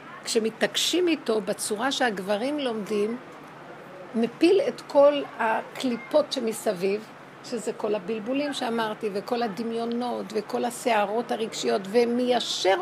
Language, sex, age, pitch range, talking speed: Hebrew, female, 60-79, 230-285 Hz, 95 wpm